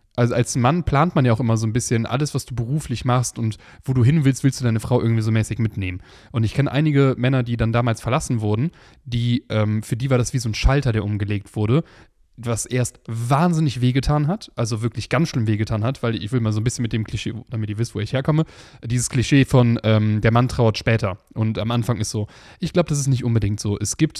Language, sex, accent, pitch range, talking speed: German, male, German, 115-140 Hz, 250 wpm